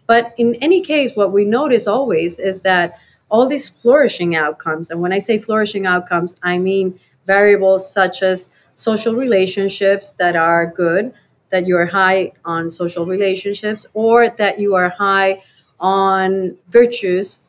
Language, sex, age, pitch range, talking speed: English, female, 30-49, 180-215 Hz, 150 wpm